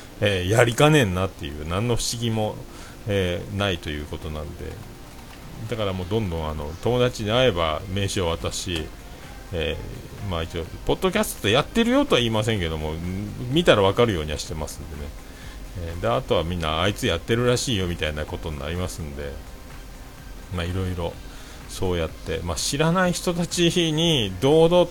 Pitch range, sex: 85-130 Hz, male